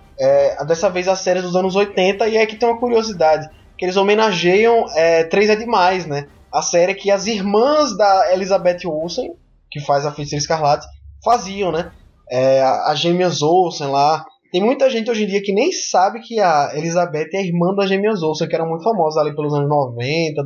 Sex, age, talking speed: male, 20-39, 200 wpm